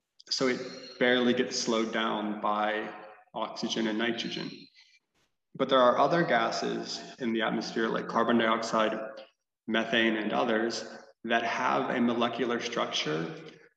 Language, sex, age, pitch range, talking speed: English, male, 20-39, 110-120 Hz, 125 wpm